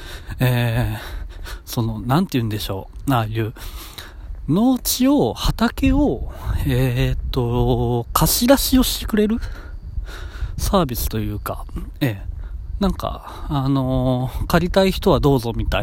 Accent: native